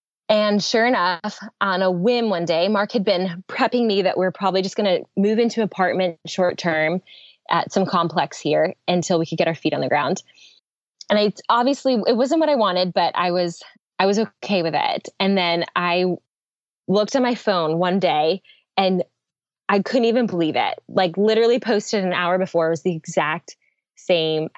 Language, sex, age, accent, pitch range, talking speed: English, female, 20-39, American, 180-220 Hz, 195 wpm